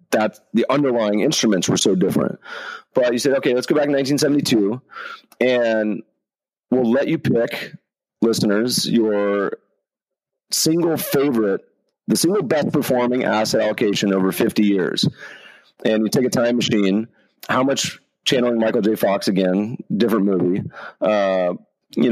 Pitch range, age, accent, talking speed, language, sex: 95-125 Hz, 30-49, American, 140 wpm, English, male